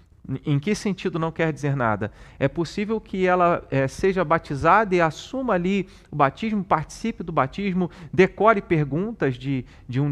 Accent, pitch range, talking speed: Brazilian, 135-180 Hz, 155 wpm